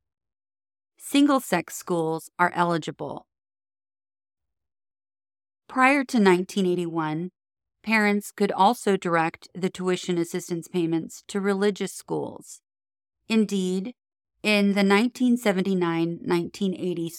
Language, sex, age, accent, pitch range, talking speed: English, female, 30-49, American, 165-200 Hz, 75 wpm